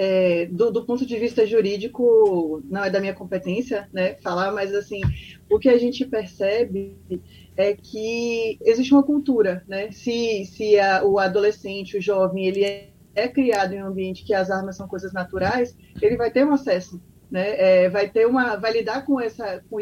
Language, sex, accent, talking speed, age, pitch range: Portuguese, female, Brazilian, 190 wpm, 20-39, 200-240 Hz